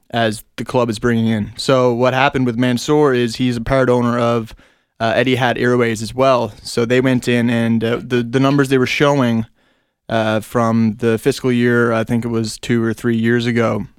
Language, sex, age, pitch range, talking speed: English, male, 20-39, 115-130 Hz, 210 wpm